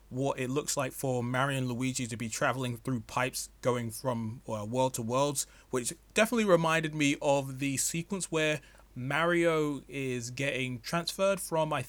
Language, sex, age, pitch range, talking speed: English, male, 20-39, 120-155 Hz, 165 wpm